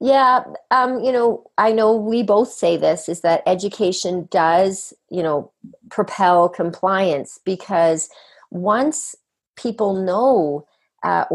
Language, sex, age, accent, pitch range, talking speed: English, female, 40-59, American, 175-215 Hz, 120 wpm